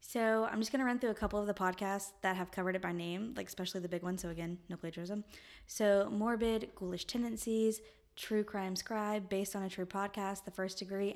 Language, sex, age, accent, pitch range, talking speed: English, female, 20-39, American, 180-215 Hz, 225 wpm